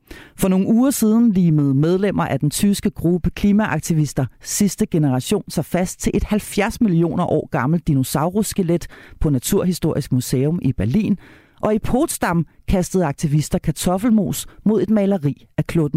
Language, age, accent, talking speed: Danish, 40-59, native, 145 wpm